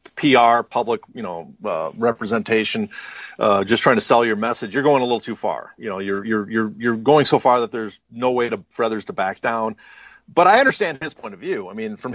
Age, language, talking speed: 40-59, English, 235 wpm